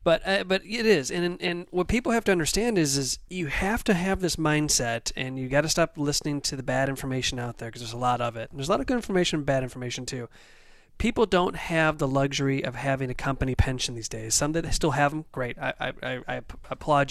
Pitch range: 130-160 Hz